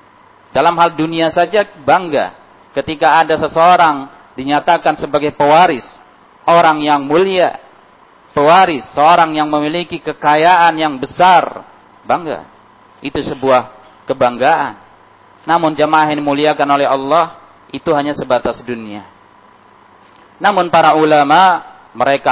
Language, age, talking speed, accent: Indonesian, 40-59, 100 wpm, native